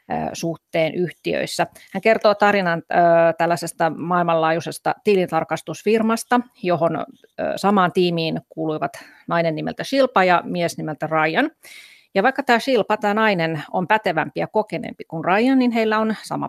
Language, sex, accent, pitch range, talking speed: Finnish, female, native, 165-205 Hz, 125 wpm